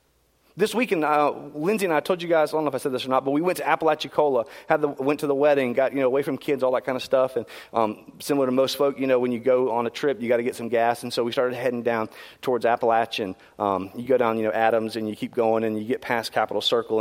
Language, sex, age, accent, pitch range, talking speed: English, male, 30-49, American, 120-190 Hz, 295 wpm